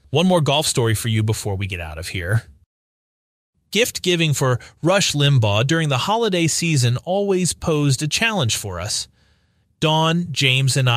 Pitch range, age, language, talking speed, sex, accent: 100-145 Hz, 30-49, English, 160 wpm, male, American